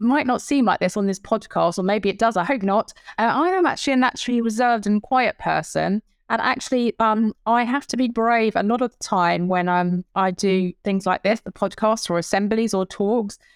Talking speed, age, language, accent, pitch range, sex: 225 wpm, 20-39, English, British, 185-240 Hz, female